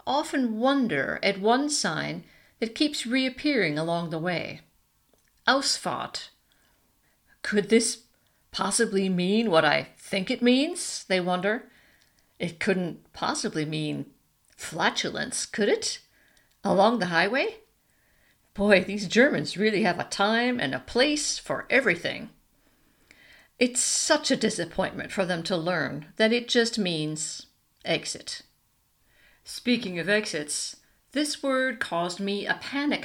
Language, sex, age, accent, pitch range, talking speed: English, female, 50-69, American, 180-255 Hz, 125 wpm